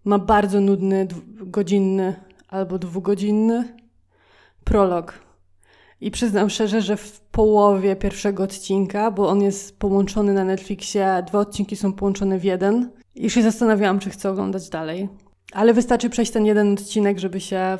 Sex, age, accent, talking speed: female, 20-39, native, 140 wpm